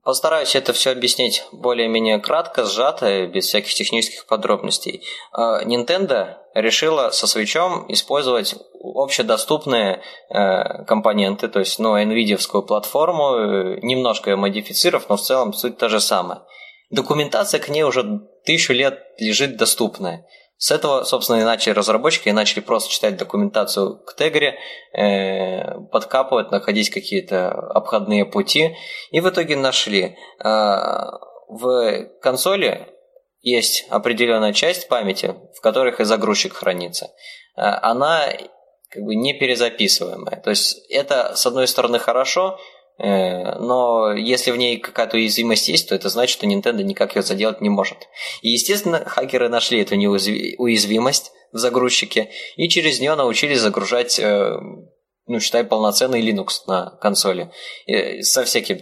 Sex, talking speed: male, 125 wpm